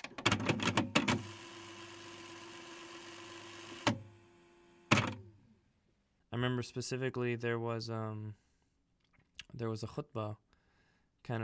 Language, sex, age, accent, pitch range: English, male, 20-39, American, 105-120 Hz